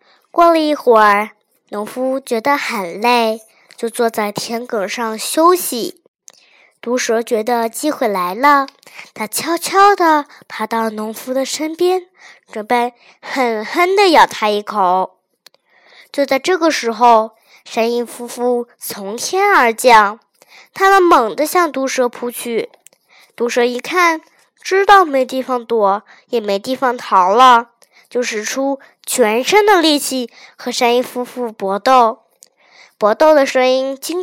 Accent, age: native, 10-29